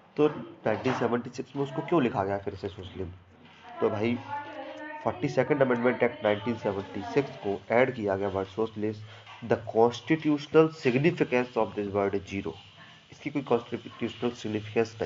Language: Hindi